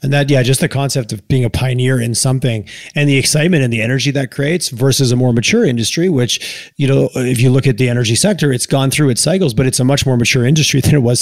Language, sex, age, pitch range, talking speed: English, male, 30-49, 120-145 Hz, 270 wpm